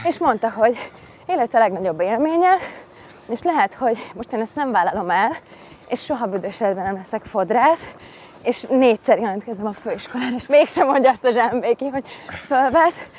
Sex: female